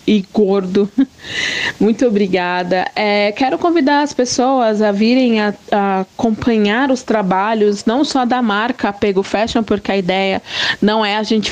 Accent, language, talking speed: Brazilian, Portuguese, 150 wpm